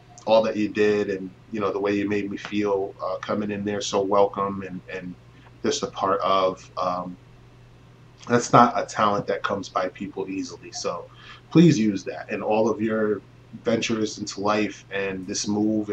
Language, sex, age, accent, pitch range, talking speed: English, male, 20-39, American, 100-125 Hz, 185 wpm